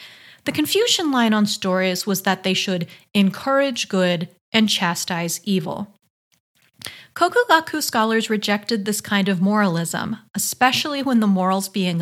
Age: 30-49